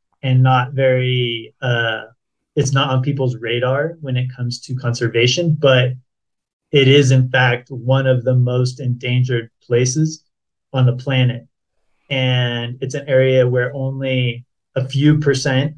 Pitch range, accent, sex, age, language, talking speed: 125-135 Hz, American, male, 30-49, English, 140 wpm